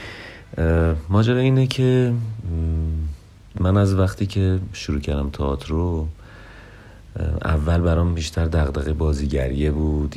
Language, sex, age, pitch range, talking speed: Persian, male, 40-59, 75-95 Hz, 100 wpm